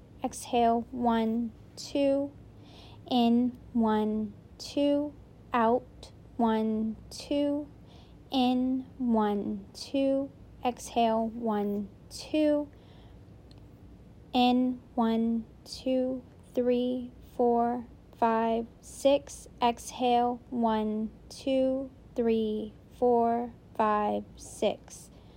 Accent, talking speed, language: American, 70 wpm, English